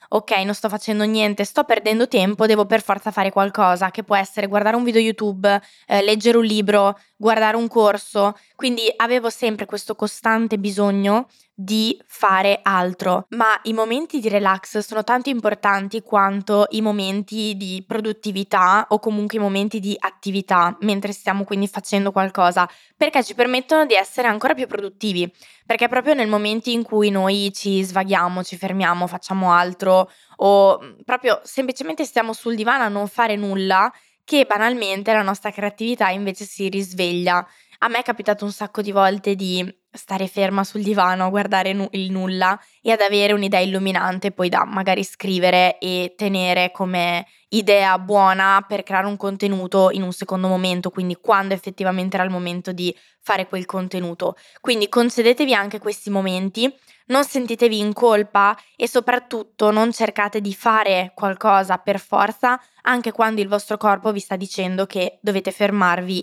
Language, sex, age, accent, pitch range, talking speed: Italian, female, 20-39, native, 190-220 Hz, 160 wpm